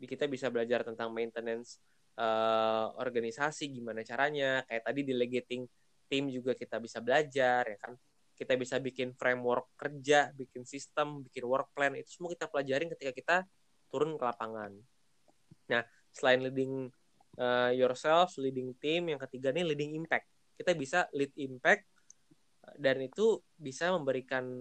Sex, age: male, 20-39